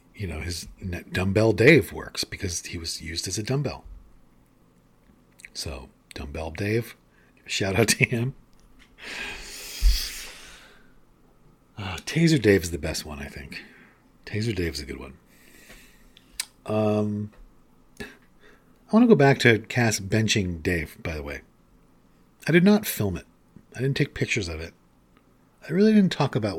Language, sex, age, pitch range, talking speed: English, male, 40-59, 75-115 Hz, 145 wpm